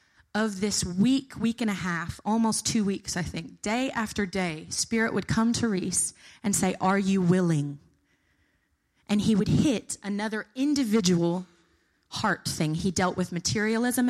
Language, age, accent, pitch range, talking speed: English, 20-39, American, 180-220 Hz, 160 wpm